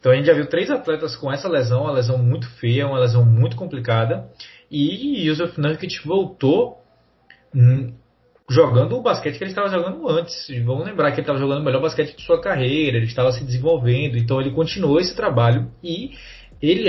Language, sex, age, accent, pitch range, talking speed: Portuguese, male, 20-39, Brazilian, 120-150 Hz, 190 wpm